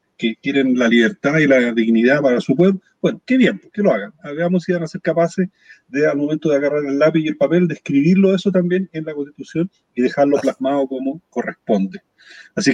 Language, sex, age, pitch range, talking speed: Spanish, male, 40-59, 125-170 Hz, 210 wpm